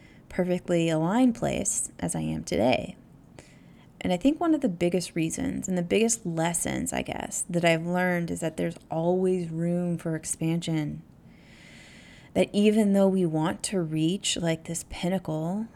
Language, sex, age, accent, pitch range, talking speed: English, female, 30-49, American, 160-195 Hz, 155 wpm